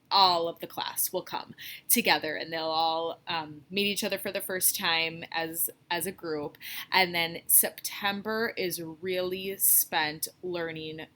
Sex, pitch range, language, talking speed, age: female, 160-195 Hz, English, 155 wpm, 20-39